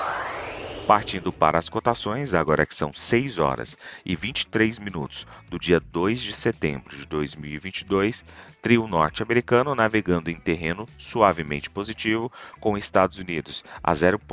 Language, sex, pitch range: Portuguese, male, 80-110 Hz